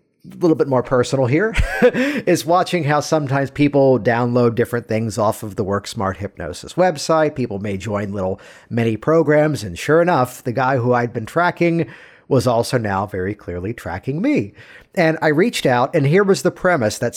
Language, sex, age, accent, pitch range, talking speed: English, male, 50-69, American, 115-160 Hz, 180 wpm